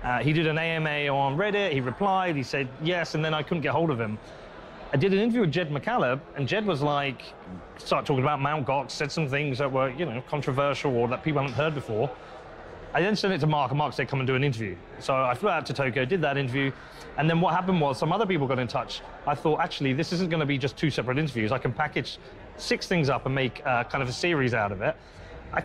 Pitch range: 130-170 Hz